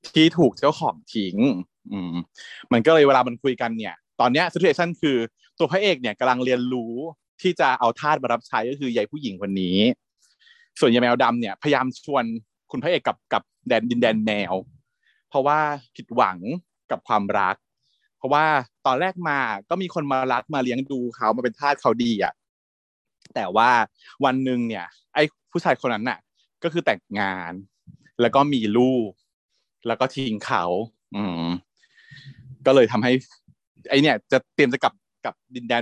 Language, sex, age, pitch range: Thai, male, 20-39, 115-155 Hz